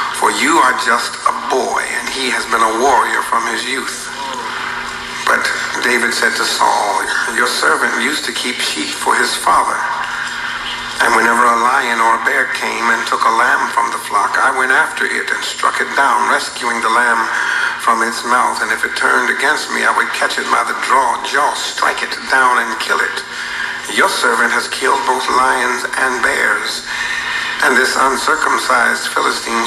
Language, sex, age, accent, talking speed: English, male, 60-79, American, 180 wpm